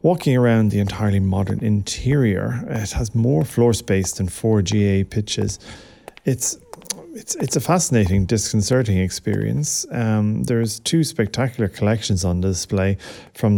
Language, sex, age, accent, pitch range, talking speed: English, male, 40-59, Irish, 100-120 Hz, 135 wpm